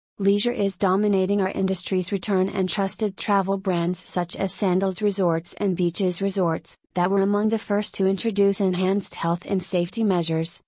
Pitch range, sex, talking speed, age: 180-200 Hz, female, 165 wpm, 30-49